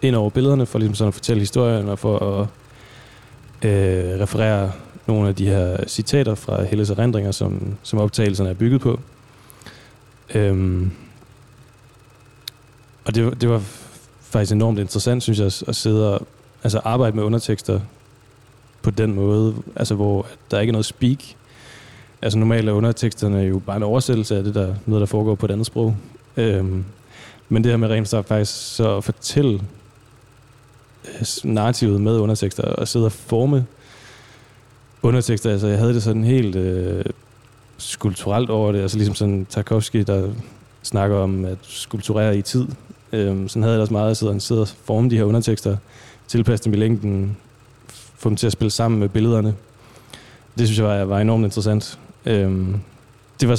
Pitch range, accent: 105-120 Hz, Danish